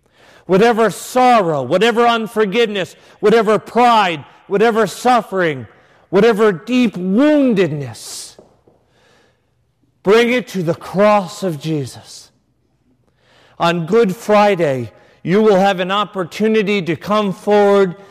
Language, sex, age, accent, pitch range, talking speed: English, male, 40-59, American, 155-205 Hz, 95 wpm